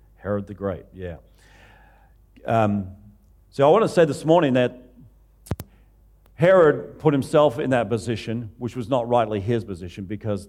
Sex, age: male, 50-69